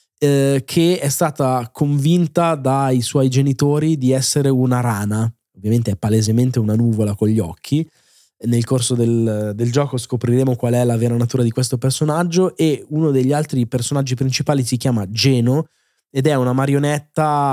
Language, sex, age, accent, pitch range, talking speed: Italian, male, 20-39, native, 120-150 Hz, 160 wpm